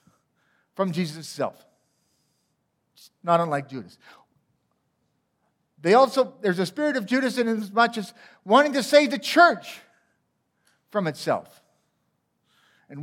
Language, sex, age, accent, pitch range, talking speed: English, male, 50-69, American, 120-195 Hz, 120 wpm